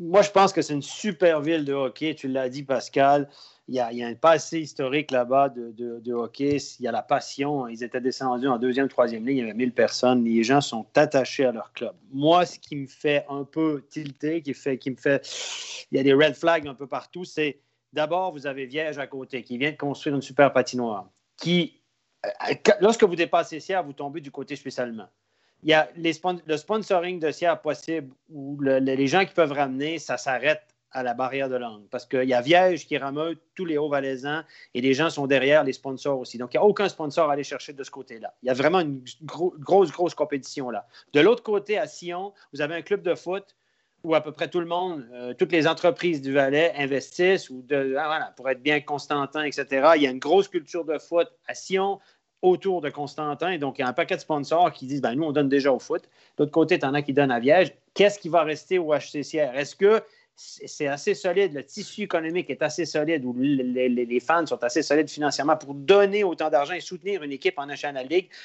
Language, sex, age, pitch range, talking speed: French, male, 30-49, 135-170 Hz, 240 wpm